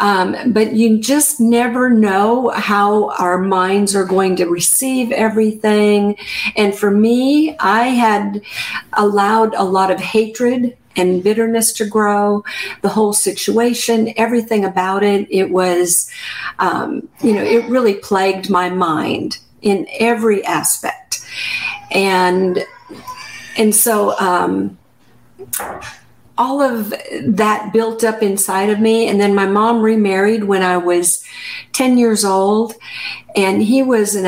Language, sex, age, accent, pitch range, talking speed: English, female, 50-69, American, 195-235 Hz, 130 wpm